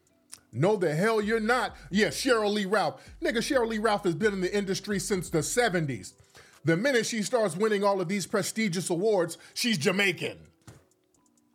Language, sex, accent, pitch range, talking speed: English, male, American, 150-210 Hz, 170 wpm